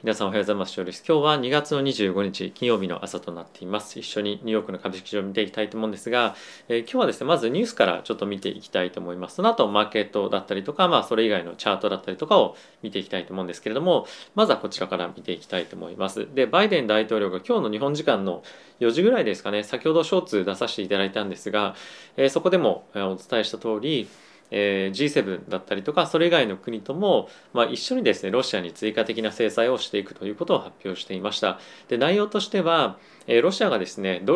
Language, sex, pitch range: Japanese, male, 100-140 Hz